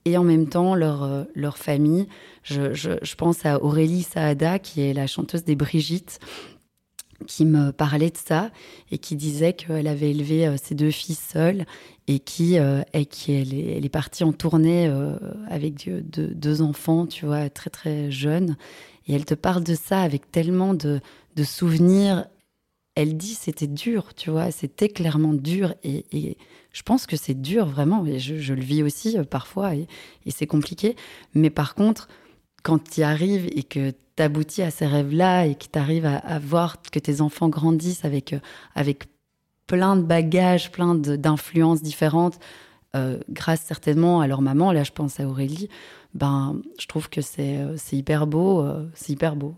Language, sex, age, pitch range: French, female, 20-39, 145-175 Hz